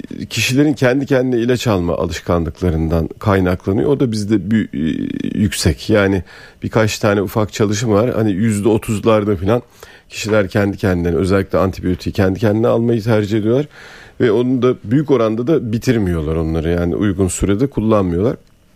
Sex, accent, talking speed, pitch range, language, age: male, native, 140 wpm, 95-115 Hz, Turkish, 40-59